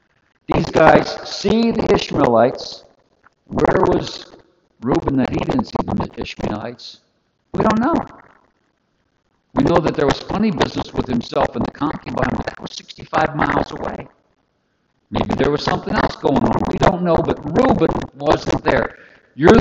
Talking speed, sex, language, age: 155 wpm, male, English, 60-79